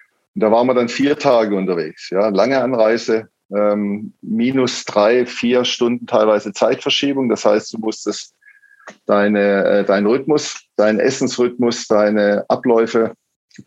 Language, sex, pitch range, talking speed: German, male, 105-120 Hz, 135 wpm